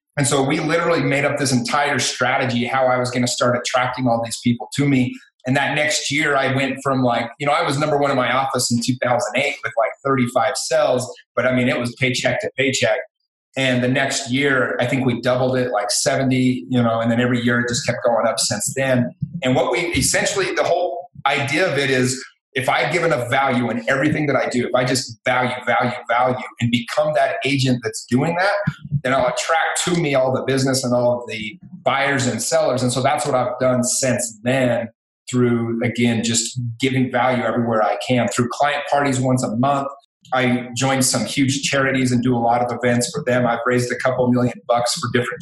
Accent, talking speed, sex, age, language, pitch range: American, 220 wpm, male, 30-49, English, 120-140 Hz